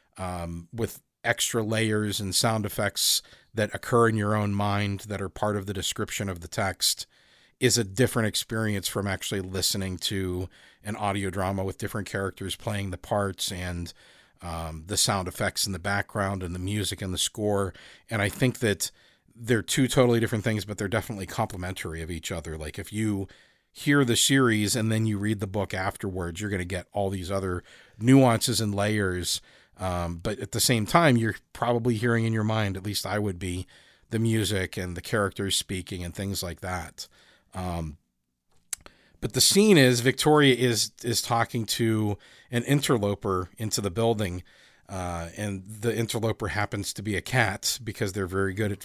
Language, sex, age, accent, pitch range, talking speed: English, male, 40-59, American, 95-115 Hz, 180 wpm